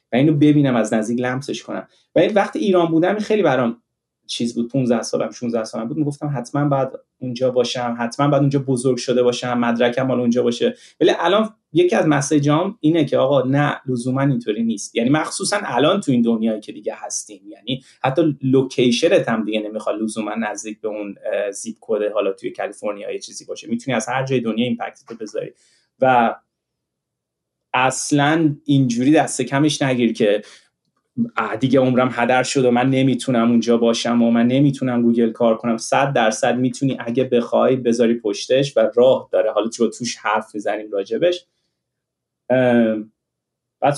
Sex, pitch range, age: male, 115-145 Hz, 30-49